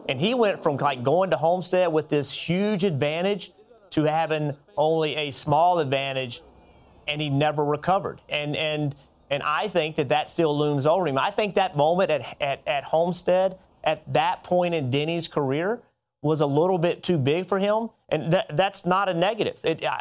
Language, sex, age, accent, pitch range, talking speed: English, male, 40-59, American, 145-185 Hz, 185 wpm